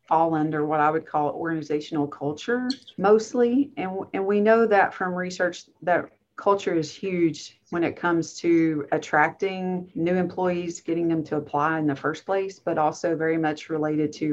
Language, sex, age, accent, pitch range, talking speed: English, female, 40-59, American, 150-180 Hz, 170 wpm